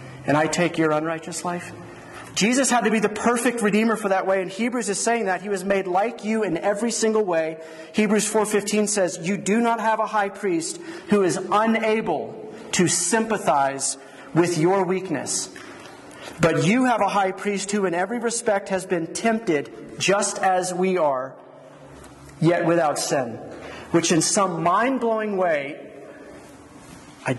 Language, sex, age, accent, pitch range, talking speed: English, male, 40-59, American, 170-215 Hz, 160 wpm